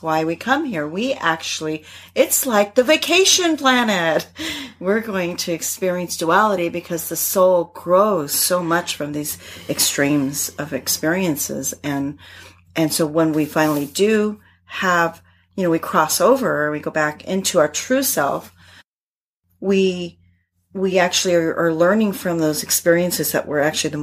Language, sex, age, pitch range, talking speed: English, female, 40-59, 150-195 Hz, 150 wpm